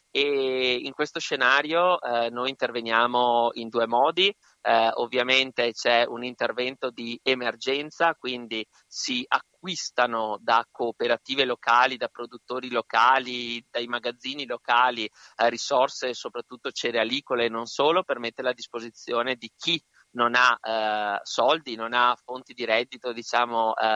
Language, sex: Italian, male